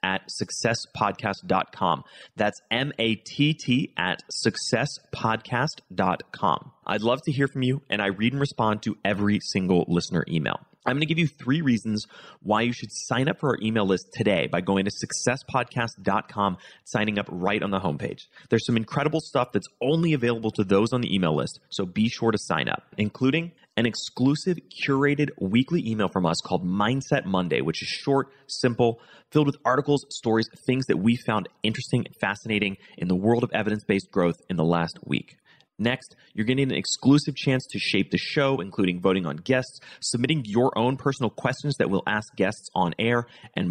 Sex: male